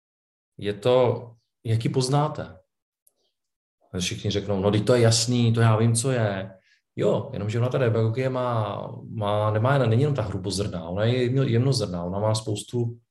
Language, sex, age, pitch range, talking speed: Czech, male, 40-59, 105-125 Hz, 165 wpm